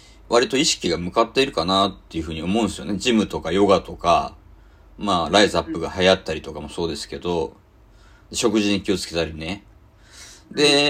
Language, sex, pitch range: Japanese, male, 85-120 Hz